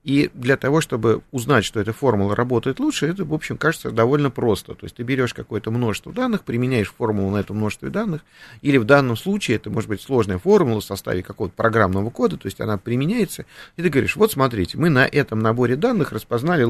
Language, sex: Russian, male